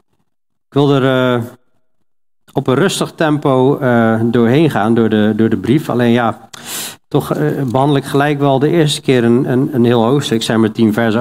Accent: Dutch